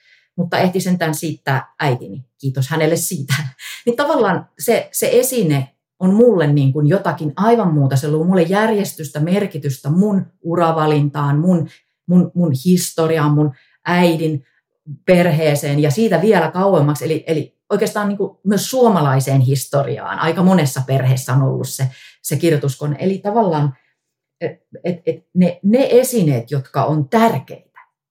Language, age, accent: Finnish, 30-49, native